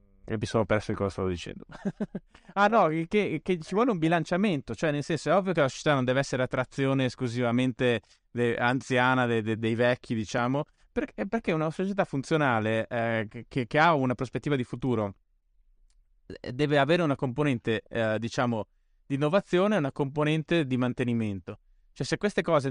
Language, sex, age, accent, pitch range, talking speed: Italian, male, 20-39, native, 115-145 Hz, 175 wpm